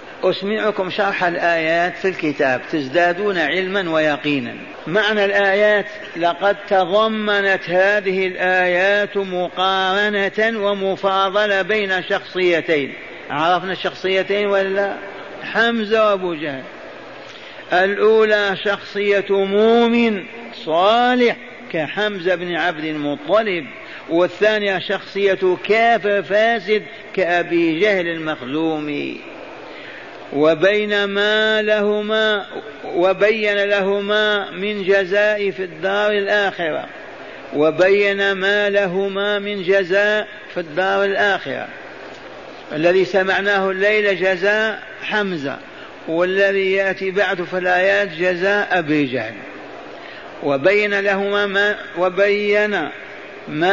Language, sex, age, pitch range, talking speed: Arabic, male, 50-69, 185-205 Hz, 85 wpm